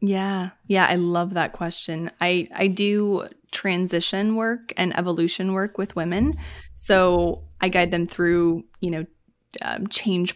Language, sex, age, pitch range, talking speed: English, female, 20-39, 170-195 Hz, 145 wpm